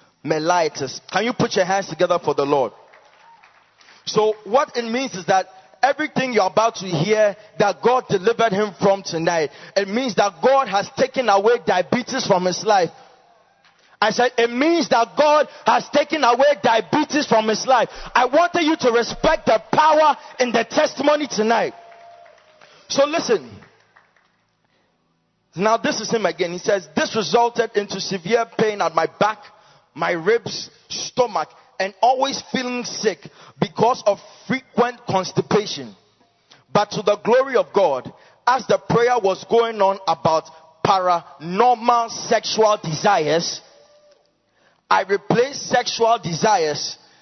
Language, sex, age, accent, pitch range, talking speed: English, male, 30-49, Jamaican, 190-255 Hz, 140 wpm